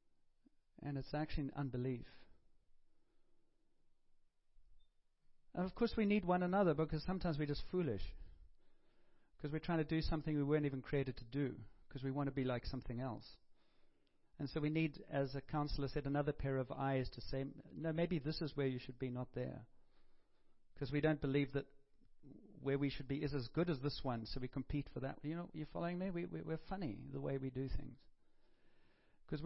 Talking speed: 195 wpm